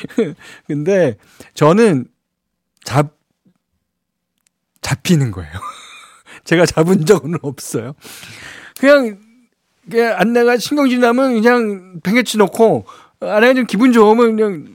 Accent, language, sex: native, Korean, male